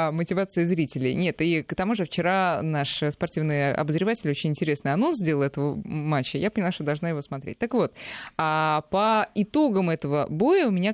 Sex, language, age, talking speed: female, Russian, 20-39, 170 wpm